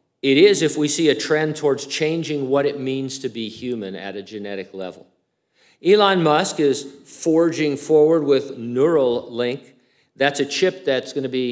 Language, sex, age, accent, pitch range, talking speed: English, male, 50-69, American, 110-145 Hz, 165 wpm